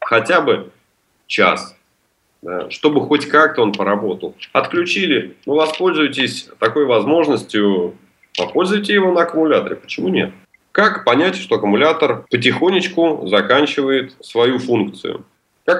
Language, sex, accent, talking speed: Russian, male, native, 115 wpm